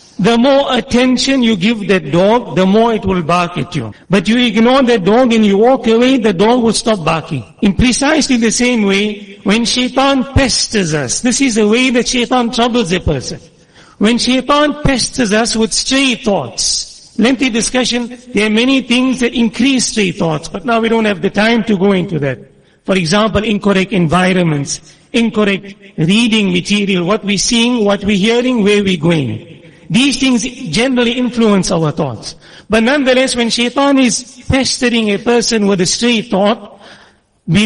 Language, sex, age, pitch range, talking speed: English, male, 60-79, 195-245 Hz, 175 wpm